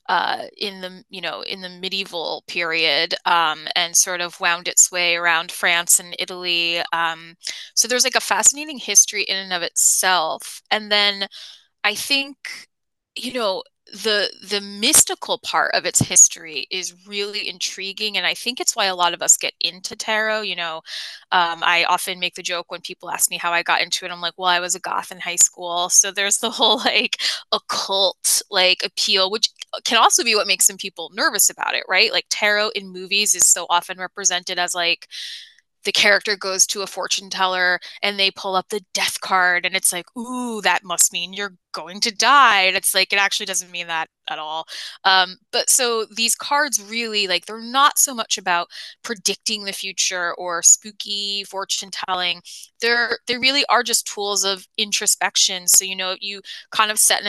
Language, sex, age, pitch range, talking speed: English, female, 10-29, 180-215 Hz, 195 wpm